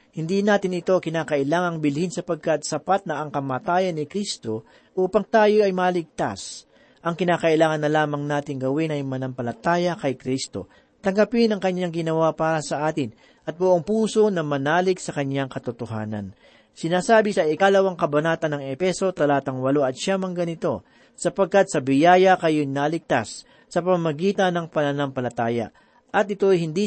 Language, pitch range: Filipino, 140-185 Hz